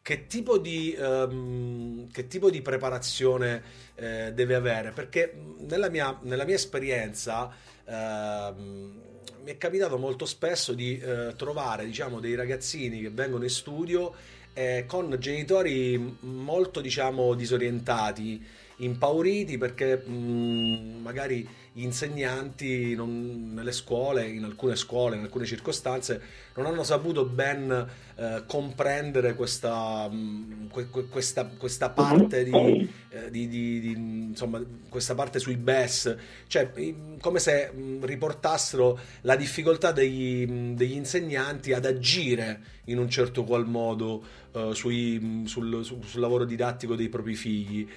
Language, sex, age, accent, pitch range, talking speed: Italian, male, 40-59, native, 115-135 Hz, 130 wpm